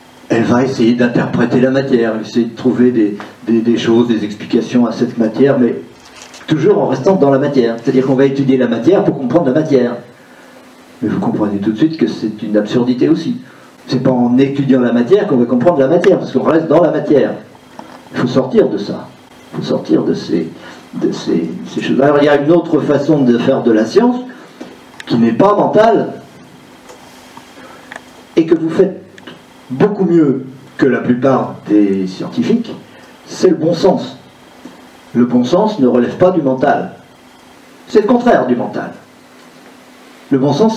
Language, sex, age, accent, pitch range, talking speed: French, male, 50-69, French, 115-145 Hz, 185 wpm